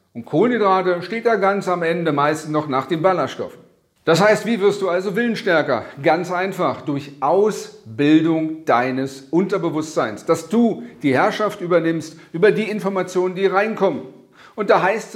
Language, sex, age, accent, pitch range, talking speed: German, male, 40-59, German, 145-200 Hz, 150 wpm